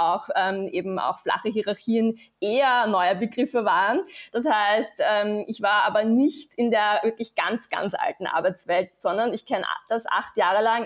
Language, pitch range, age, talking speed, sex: German, 205-245 Hz, 20-39, 170 wpm, female